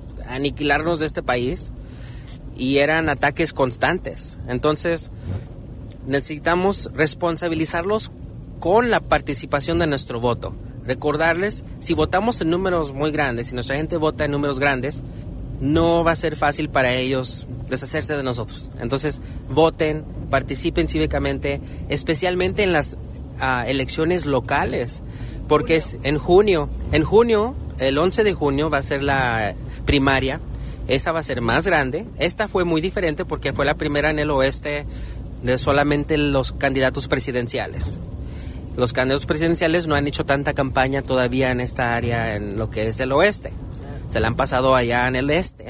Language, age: Spanish, 30-49